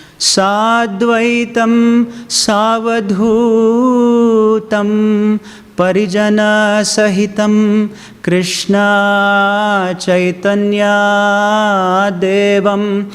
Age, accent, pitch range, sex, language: 30-49, Indian, 180-215 Hz, male, English